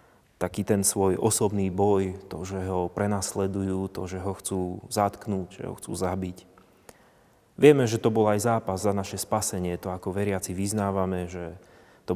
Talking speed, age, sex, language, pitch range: 165 wpm, 30-49, male, Slovak, 95-115 Hz